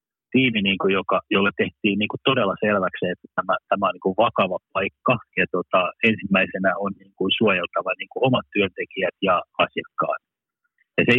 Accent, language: native, Finnish